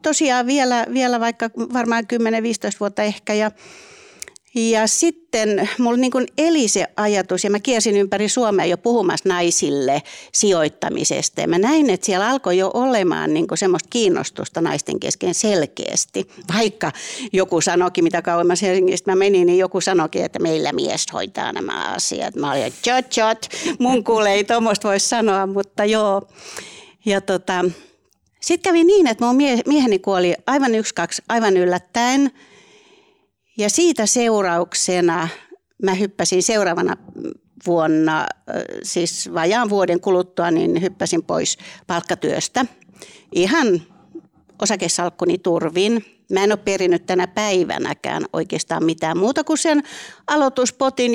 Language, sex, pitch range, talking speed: Finnish, female, 180-245 Hz, 130 wpm